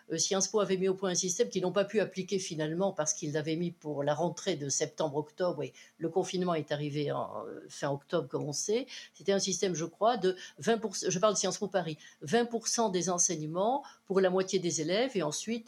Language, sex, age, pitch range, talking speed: French, female, 60-79, 160-215 Hz, 205 wpm